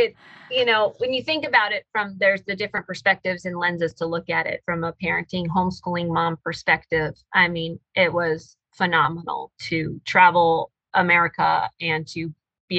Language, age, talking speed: English, 30-49, 170 wpm